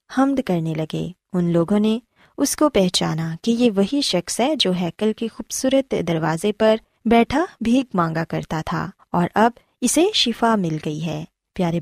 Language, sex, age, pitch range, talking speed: Urdu, female, 20-39, 180-255 Hz, 170 wpm